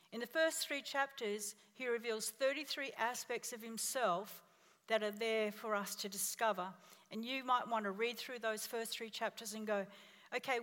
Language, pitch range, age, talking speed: English, 215-275 Hz, 50-69, 180 wpm